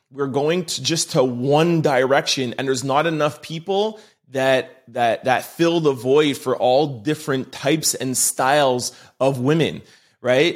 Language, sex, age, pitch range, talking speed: English, male, 30-49, 130-175 Hz, 155 wpm